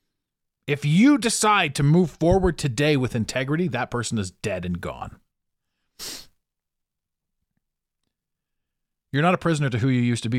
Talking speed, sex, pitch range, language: 145 wpm, male, 110-155 Hz, English